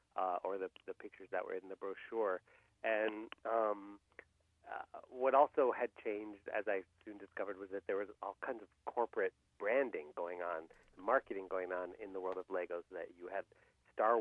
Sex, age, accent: male, 40-59, American